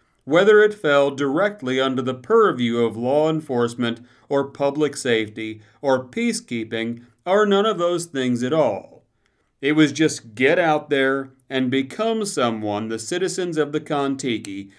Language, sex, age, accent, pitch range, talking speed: English, male, 40-59, American, 115-145 Hz, 145 wpm